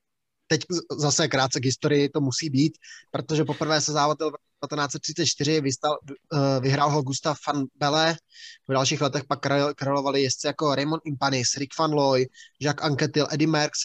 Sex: male